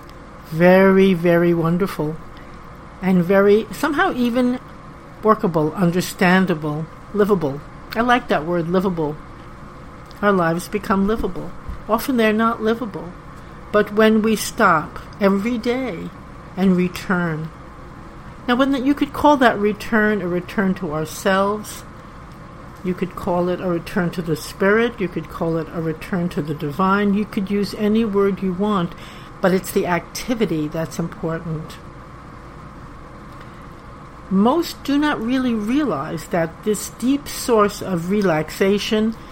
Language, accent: English, American